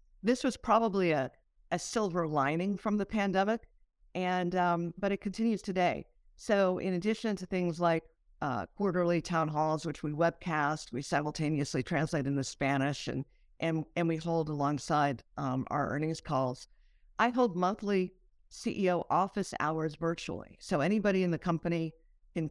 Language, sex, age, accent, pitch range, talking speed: English, female, 50-69, American, 155-190 Hz, 150 wpm